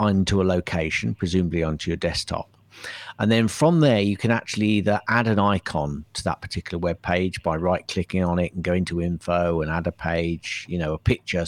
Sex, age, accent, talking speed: male, 50-69, British, 210 wpm